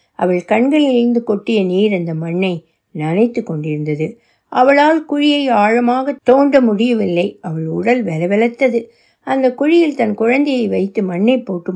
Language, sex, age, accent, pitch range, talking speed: Tamil, female, 60-79, native, 180-240 Hz, 120 wpm